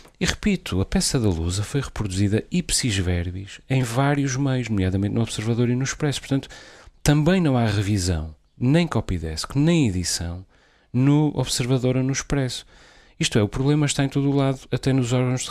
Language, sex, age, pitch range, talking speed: Portuguese, male, 40-59, 105-135 Hz, 180 wpm